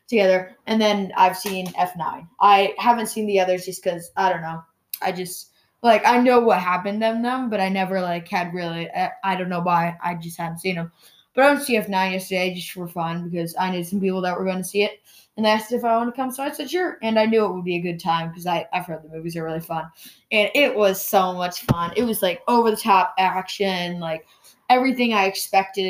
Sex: female